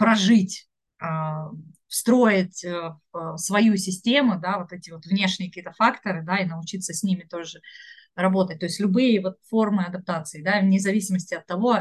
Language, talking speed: Russian, 145 wpm